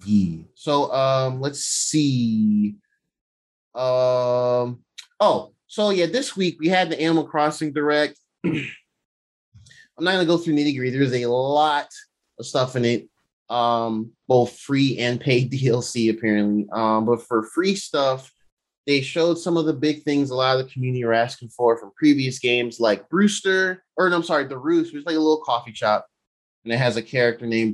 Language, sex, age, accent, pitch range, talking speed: English, male, 20-39, American, 115-150 Hz, 175 wpm